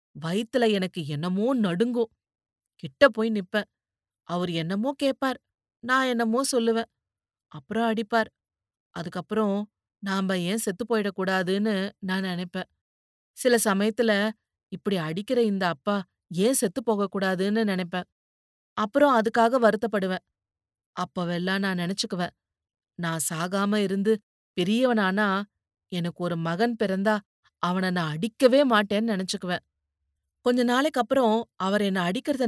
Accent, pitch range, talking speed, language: native, 175-230 Hz, 105 wpm, Tamil